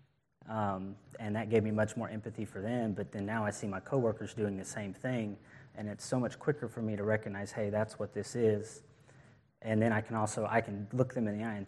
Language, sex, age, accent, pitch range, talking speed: English, male, 30-49, American, 105-120 Hz, 245 wpm